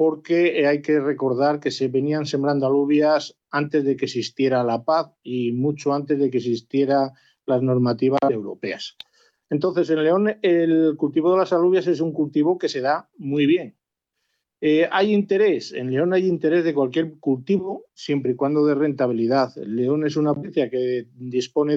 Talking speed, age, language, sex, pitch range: 170 wpm, 50-69, Spanish, male, 135-175 Hz